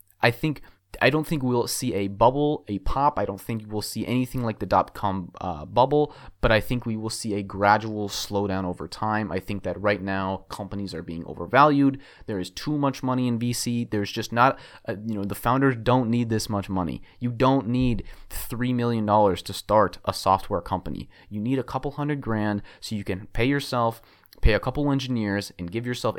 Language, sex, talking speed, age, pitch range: English, male, 210 wpm, 30-49, 95-125 Hz